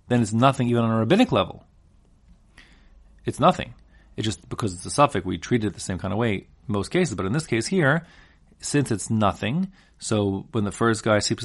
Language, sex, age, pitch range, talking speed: English, male, 30-49, 95-130 Hz, 215 wpm